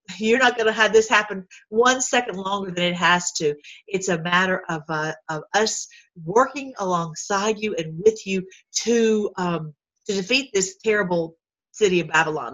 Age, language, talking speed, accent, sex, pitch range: 50-69, English, 170 wpm, American, female, 175-220 Hz